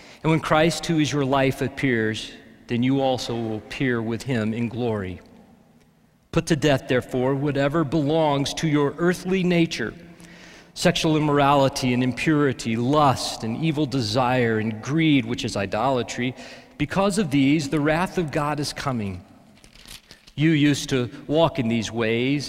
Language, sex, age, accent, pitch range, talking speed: English, male, 40-59, American, 125-170 Hz, 150 wpm